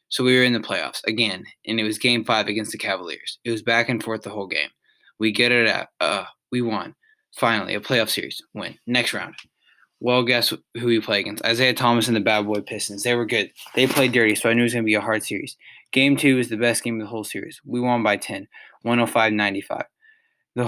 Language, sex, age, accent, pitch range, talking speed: English, male, 20-39, American, 105-125 Hz, 240 wpm